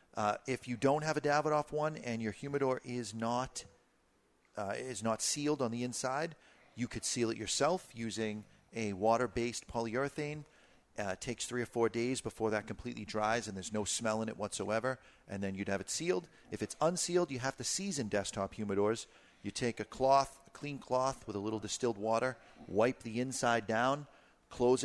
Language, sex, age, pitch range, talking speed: English, male, 40-59, 105-130 Hz, 190 wpm